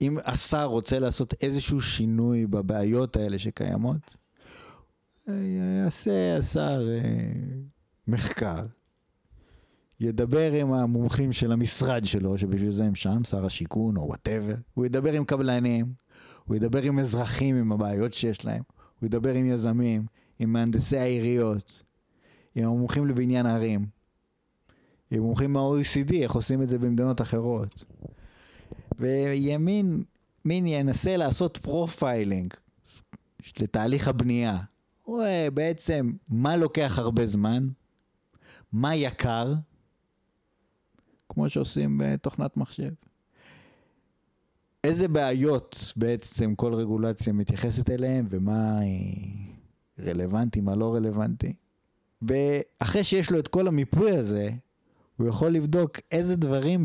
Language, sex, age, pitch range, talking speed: Hebrew, male, 30-49, 110-140 Hz, 105 wpm